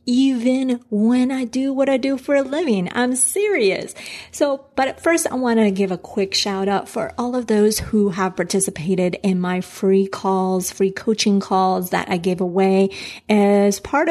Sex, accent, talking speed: female, American, 185 wpm